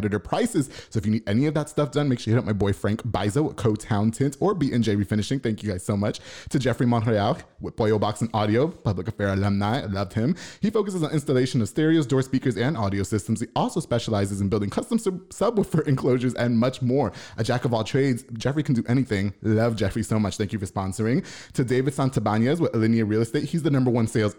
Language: English